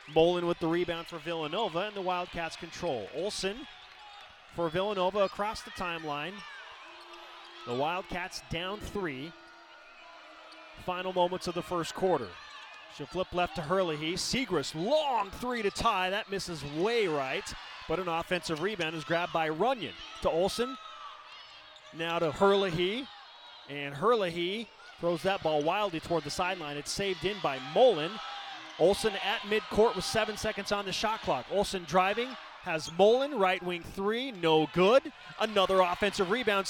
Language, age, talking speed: English, 30-49, 145 wpm